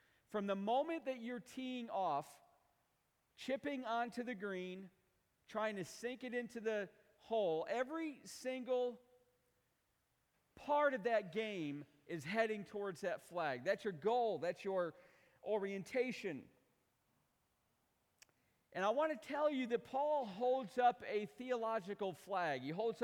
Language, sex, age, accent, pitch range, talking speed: English, male, 40-59, American, 195-250 Hz, 130 wpm